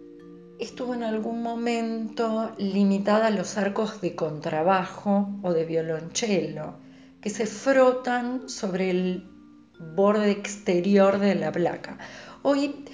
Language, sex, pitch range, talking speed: Spanish, female, 180-245 Hz, 110 wpm